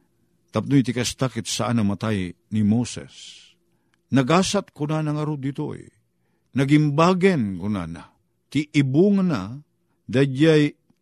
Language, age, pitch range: Filipino, 50-69, 115-165 Hz